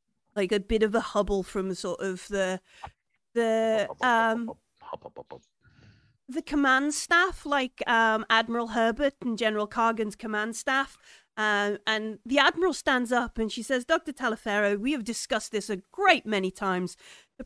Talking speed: 150 wpm